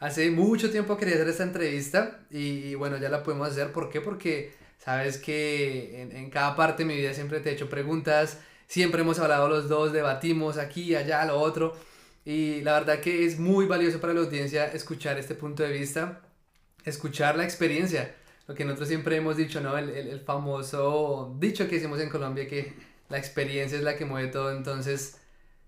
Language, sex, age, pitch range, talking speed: English, male, 20-39, 145-165 Hz, 195 wpm